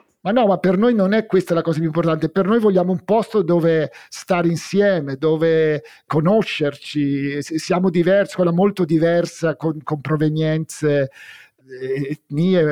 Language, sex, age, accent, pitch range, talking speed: Italian, male, 50-69, native, 160-190 Hz, 145 wpm